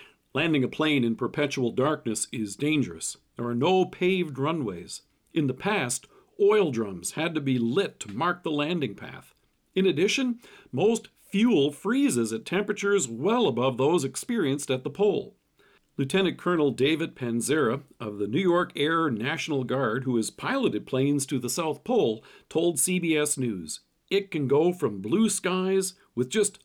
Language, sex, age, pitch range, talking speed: English, male, 50-69, 135-190 Hz, 160 wpm